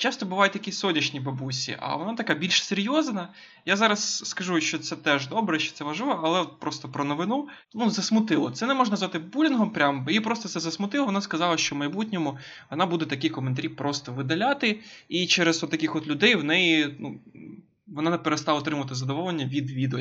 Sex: male